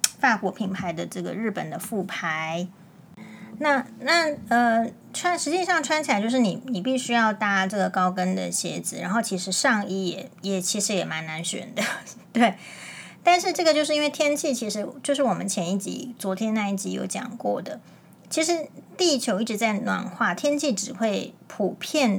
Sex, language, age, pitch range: female, Chinese, 30-49, 190-255 Hz